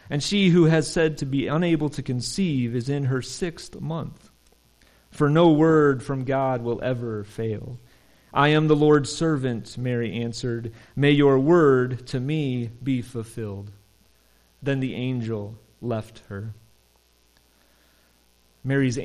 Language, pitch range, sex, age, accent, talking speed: English, 100-140 Hz, male, 30-49, American, 135 wpm